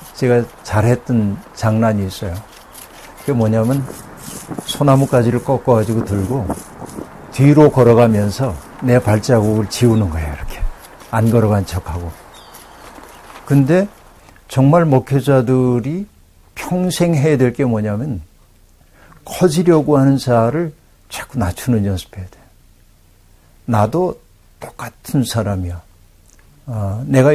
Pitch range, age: 100-130 Hz, 60-79